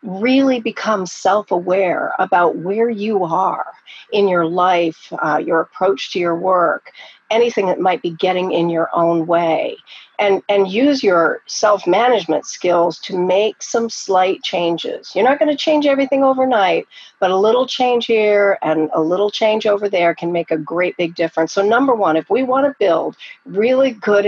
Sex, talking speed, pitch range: female, 175 wpm, 180-245 Hz